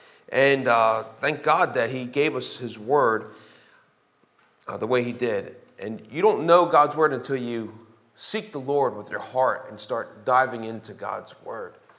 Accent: American